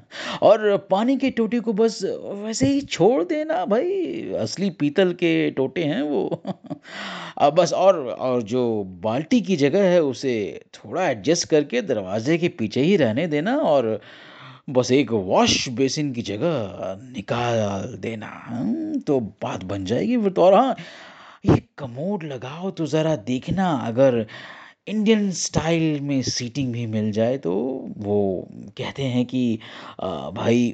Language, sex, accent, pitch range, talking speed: Hindi, male, native, 120-195 Hz, 145 wpm